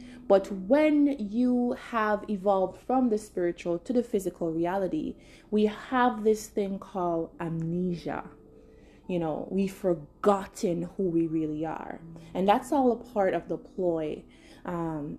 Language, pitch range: English, 165-215 Hz